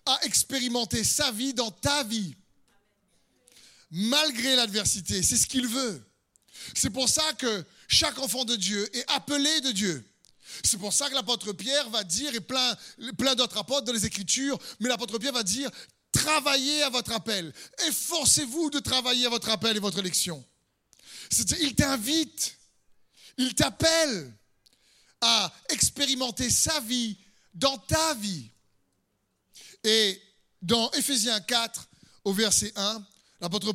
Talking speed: 140 wpm